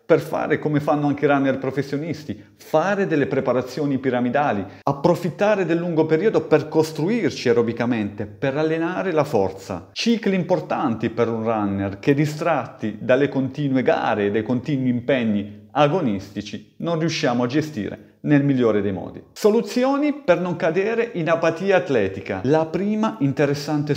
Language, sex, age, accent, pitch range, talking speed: Italian, male, 40-59, native, 120-165 Hz, 140 wpm